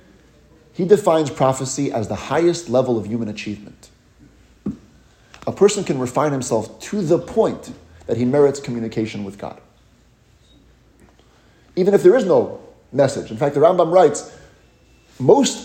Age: 30-49